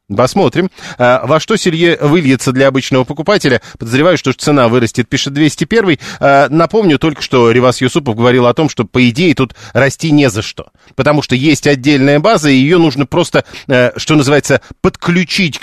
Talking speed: 165 wpm